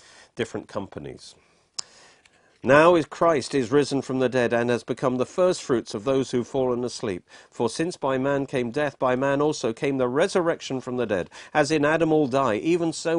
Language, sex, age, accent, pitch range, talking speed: English, male, 50-69, British, 100-140 Hz, 190 wpm